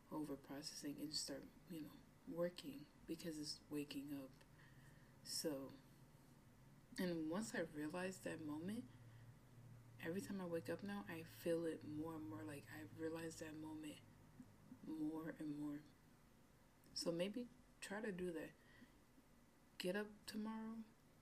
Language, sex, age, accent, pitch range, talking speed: English, female, 20-39, American, 150-185 Hz, 135 wpm